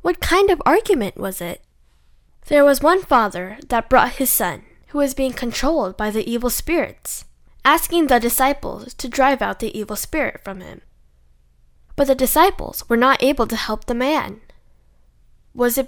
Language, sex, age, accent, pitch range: Korean, female, 10-29, American, 200-280 Hz